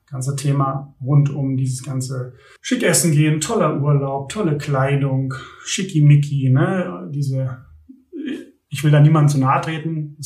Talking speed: 140 wpm